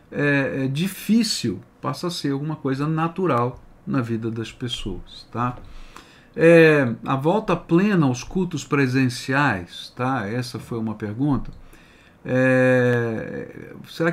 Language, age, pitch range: Portuguese, 50-69, 120-155 Hz